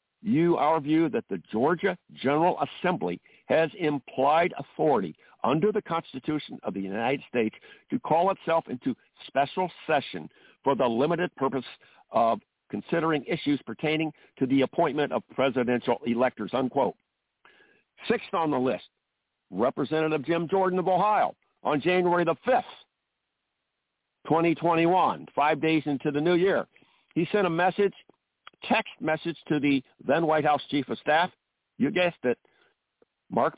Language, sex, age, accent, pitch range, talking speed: English, male, 60-79, American, 135-175 Hz, 140 wpm